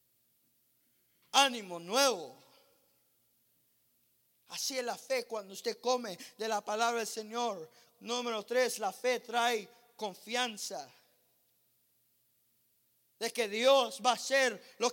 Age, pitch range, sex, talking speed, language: 50-69, 230-310 Hz, male, 110 wpm, English